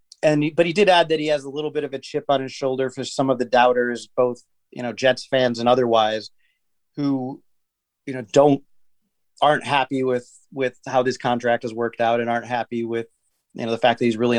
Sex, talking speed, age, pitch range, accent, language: male, 225 wpm, 30-49, 120-140 Hz, American, English